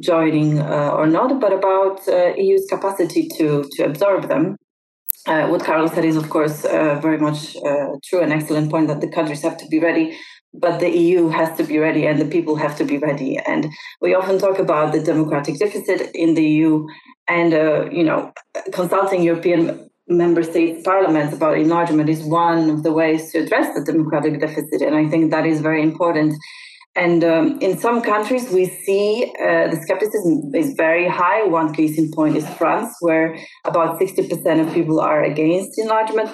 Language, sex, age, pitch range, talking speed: English, female, 30-49, 155-200 Hz, 190 wpm